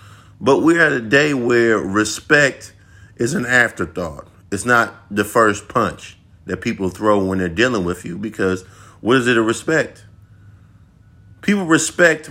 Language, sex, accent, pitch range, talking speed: English, male, American, 95-125 Hz, 150 wpm